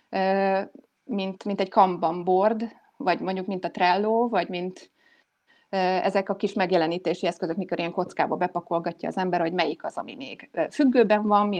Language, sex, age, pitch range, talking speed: Hungarian, female, 30-49, 180-210 Hz, 155 wpm